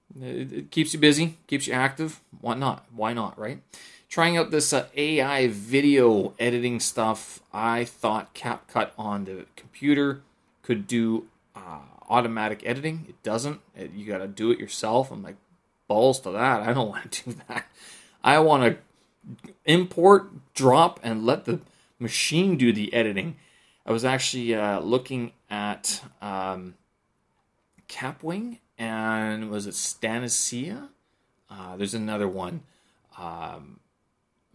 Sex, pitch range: male, 110-150 Hz